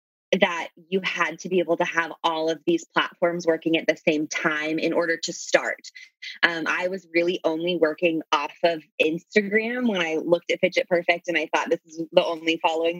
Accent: American